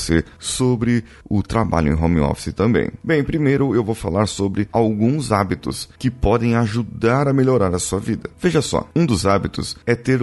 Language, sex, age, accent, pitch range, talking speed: Portuguese, male, 30-49, Brazilian, 80-115 Hz, 175 wpm